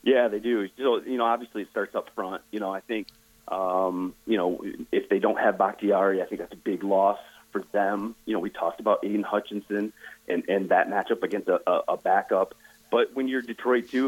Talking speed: 215 wpm